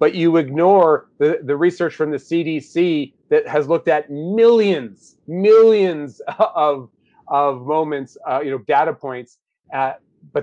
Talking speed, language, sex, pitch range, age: 145 wpm, English, male, 130-170 Hz, 30-49